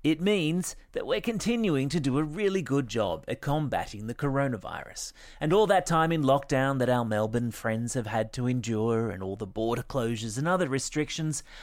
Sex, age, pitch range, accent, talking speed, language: male, 30-49, 115-170 Hz, Australian, 190 wpm, English